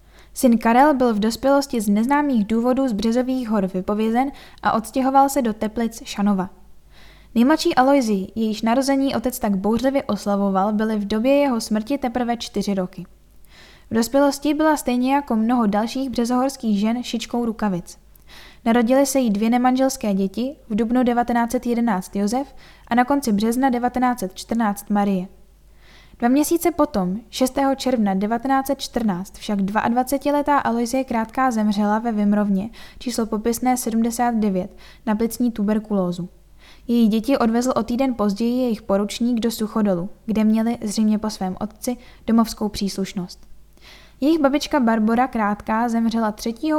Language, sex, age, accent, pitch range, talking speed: Czech, female, 10-29, native, 205-255 Hz, 135 wpm